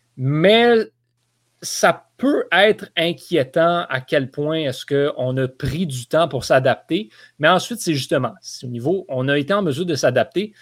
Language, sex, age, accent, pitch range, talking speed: French, male, 30-49, Canadian, 130-190 Hz, 165 wpm